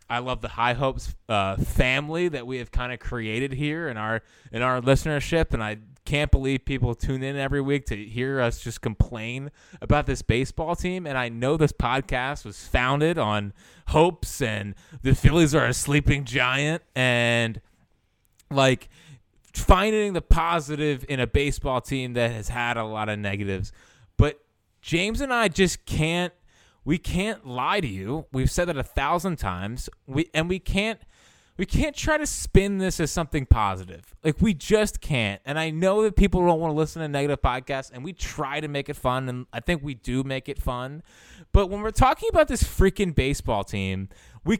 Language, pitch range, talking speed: English, 120-170 Hz, 190 wpm